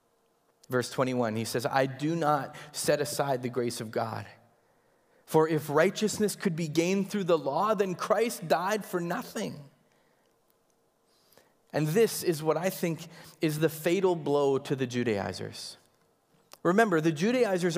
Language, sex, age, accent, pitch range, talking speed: English, male, 30-49, American, 140-195 Hz, 145 wpm